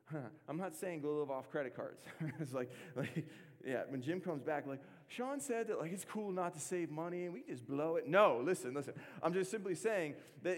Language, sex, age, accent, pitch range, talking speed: English, male, 30-49, American, 165-225 Hz, 225 wpm